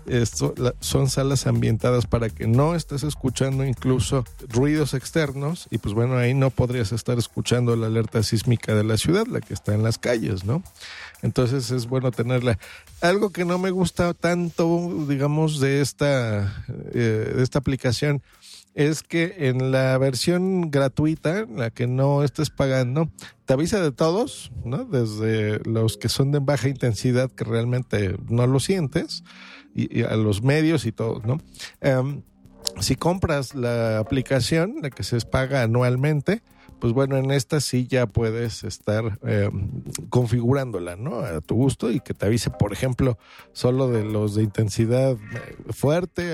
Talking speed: 160 wpm